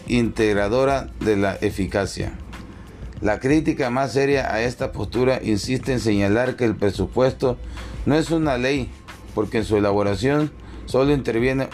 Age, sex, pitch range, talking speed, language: 40-59, male, 100-125 Hz, 140 wpm, Spanish